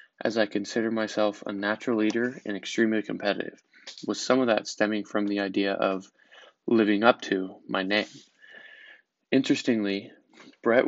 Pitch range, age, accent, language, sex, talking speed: 100-115 Hz, 20-39, American, English, male, 145 wpm